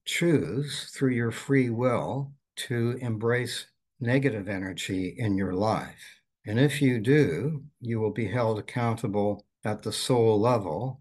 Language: English